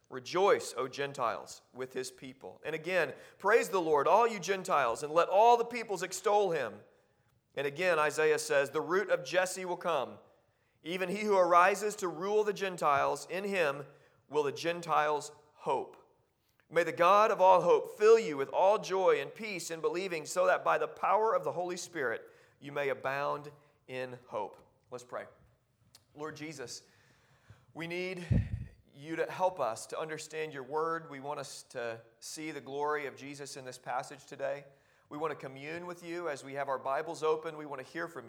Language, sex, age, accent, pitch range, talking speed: English, male, 40-59, American, 135-180 Hz, 185 wpm